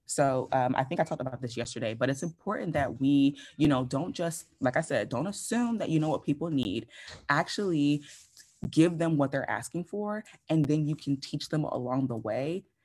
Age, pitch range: 20-39, 130-170 Hz